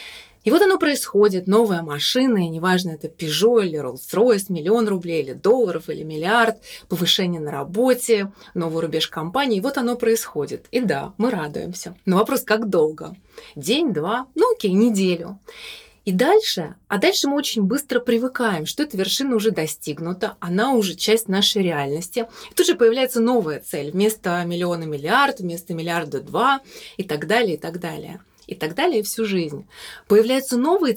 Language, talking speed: Russian, 165 wpm